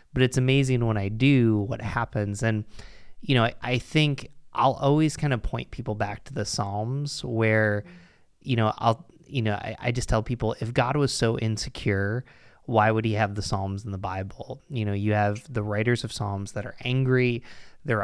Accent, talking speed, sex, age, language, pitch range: American, 205 wpm, male, 20-39, English, 105-125 Hz